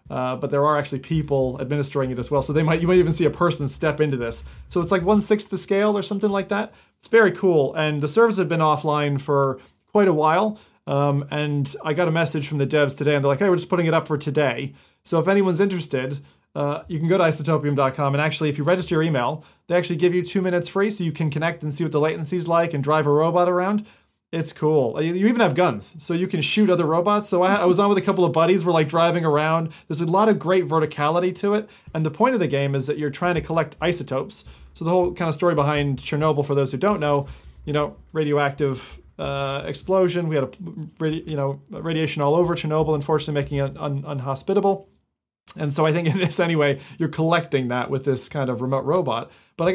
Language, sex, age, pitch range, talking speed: English, male, 30-49, 145-180 Hz, 245 wpm